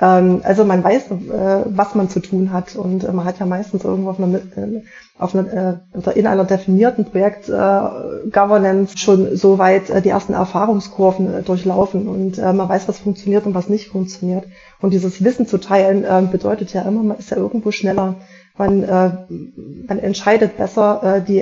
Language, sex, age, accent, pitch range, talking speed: German, female, 20-39, German, 190-215 Hz, 155 wpm